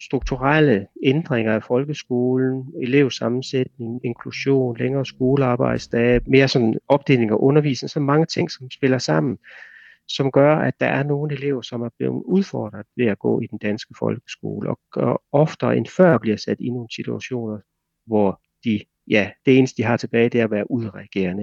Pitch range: 110-140 Hz